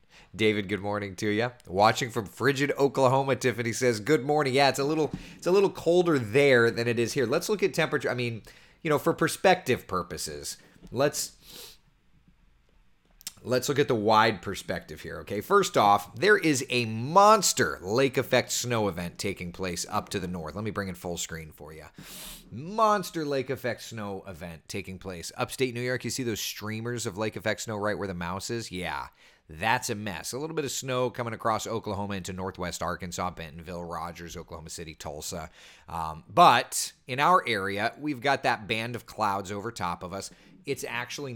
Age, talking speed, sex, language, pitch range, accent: 30-49, 190 wpm, male, English, 90-130 Hz, American